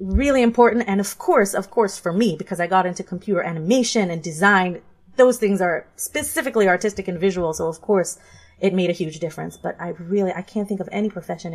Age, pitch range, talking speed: 30-49, 175-210 Hz, 215 wpm